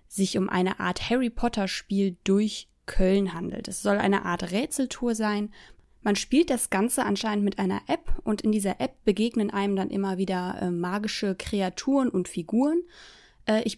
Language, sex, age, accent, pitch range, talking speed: German, female, 20-39, German, 195-235 Hz, 160 wpm